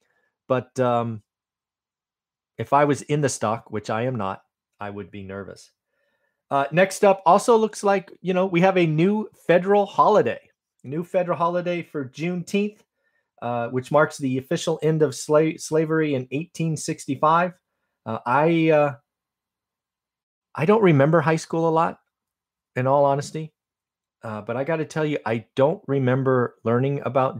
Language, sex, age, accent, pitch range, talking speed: English, male, 30-49, American, 120-160 Hz, 150 wpm